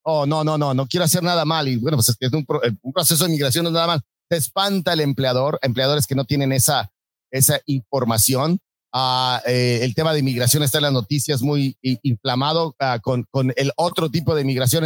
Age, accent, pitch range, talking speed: 40-59, Mexican, 130-165 Hz, 240 wpm